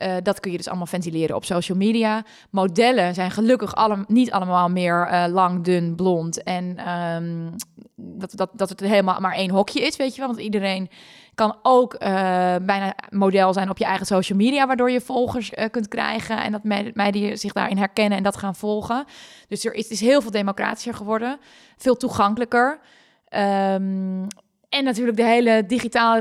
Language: Dutch